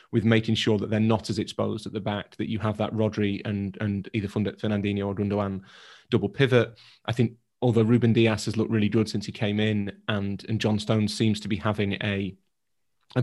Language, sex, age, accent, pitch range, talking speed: English, male, 30-49, British, 105-115 Hz, 215 wpm